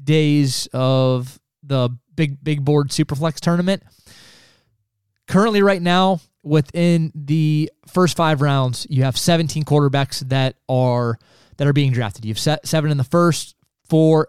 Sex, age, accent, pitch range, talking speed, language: male, 20-39, American, 130-165 Hz, 140 wpm, English